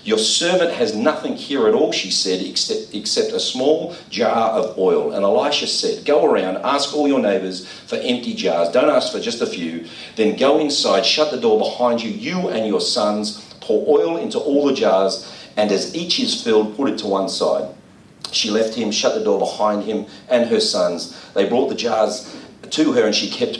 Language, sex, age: English, male, 40-59